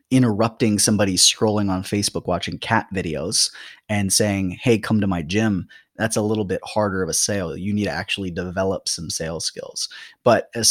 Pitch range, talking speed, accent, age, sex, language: 95-115 Hz, 185 wpm, American, 20-39, male, English